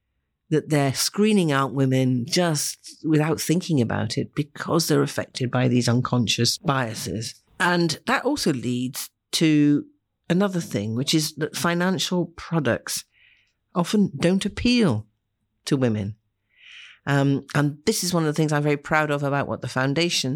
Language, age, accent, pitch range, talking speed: English, 50-69, British, 125-175 Hz, 145 wpm